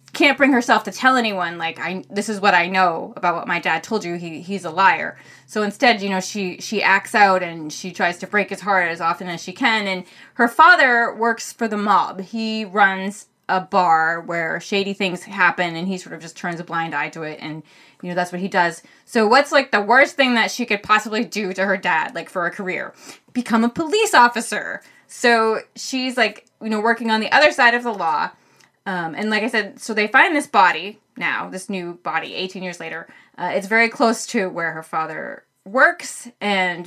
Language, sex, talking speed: English, female, 225 wpm